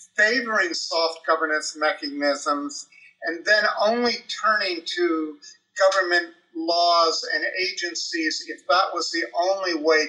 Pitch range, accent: 155-215 Hz, American